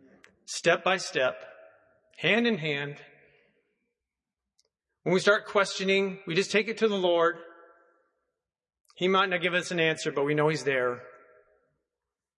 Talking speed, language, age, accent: 120 wpm, English, 40-59, American